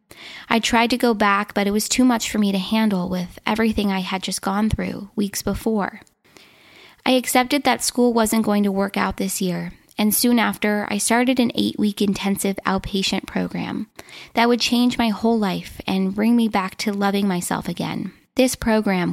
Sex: female